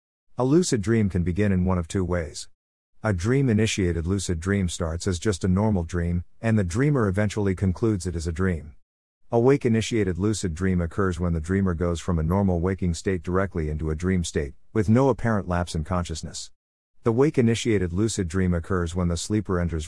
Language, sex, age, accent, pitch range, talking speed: English, male, 50-69, American, 85-110 Hz, 200 wpm